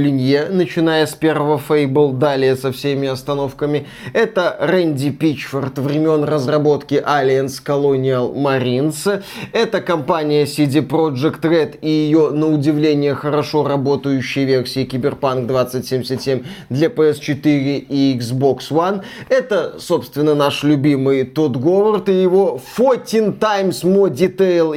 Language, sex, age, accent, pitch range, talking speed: Russian, male, 20-39, native, 145-200 Hz, 115 wpm